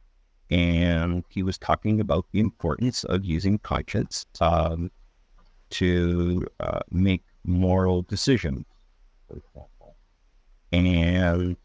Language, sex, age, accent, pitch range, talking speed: English, male, 50-69, American, 80-95 Hz, 90 wpm